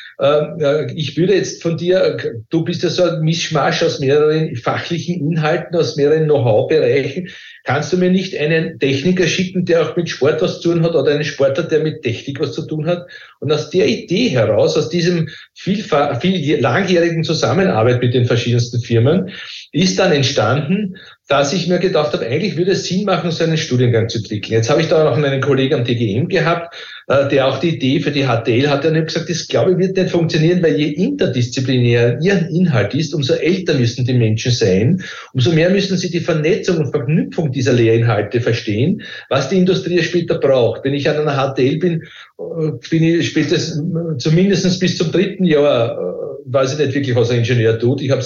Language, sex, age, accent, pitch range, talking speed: German, male, 50-69, Austrian, 135-175 Hz, 195 wpm